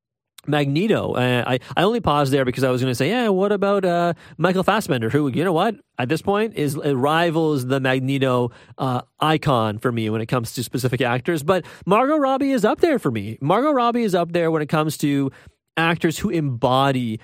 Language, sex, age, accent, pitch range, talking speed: English, male, 30-49, American, 125-165 Hz, 210 wpm